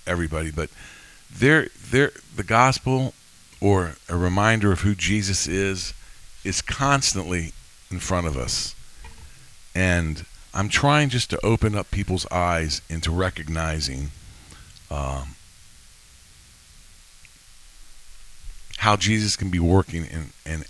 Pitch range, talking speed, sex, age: 75-100 Hz, 110 wpm, male, 50-69